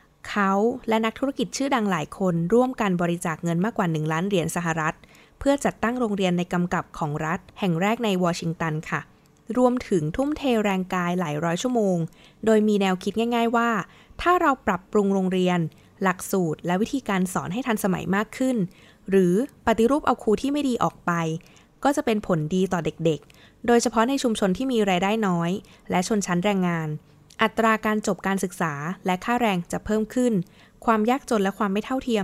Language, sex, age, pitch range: Thai, female, 20-39, 175-230 Hz